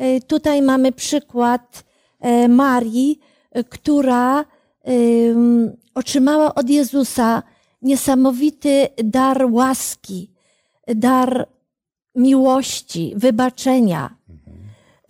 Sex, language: female, Polish